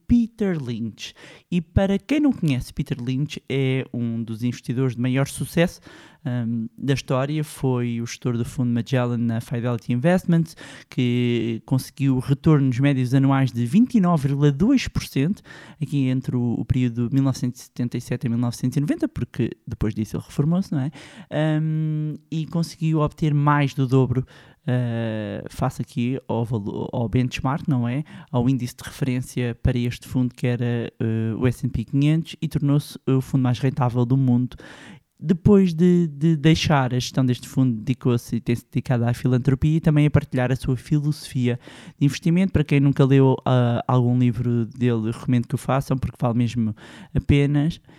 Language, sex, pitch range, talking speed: Portuguese, male, 120-150 Hz, 150 wpm